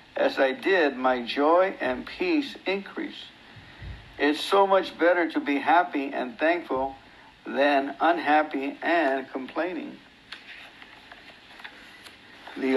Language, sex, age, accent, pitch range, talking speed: English, male, 60-79, American, 140-185 Hz, 105 wpm